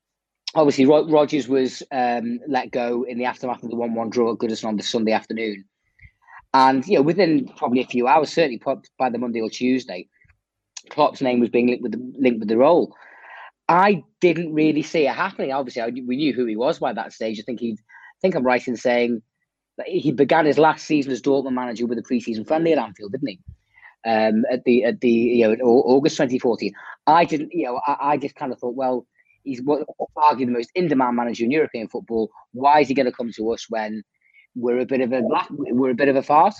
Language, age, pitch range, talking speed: English, 30-49, 120-145 Hz, 220 wpm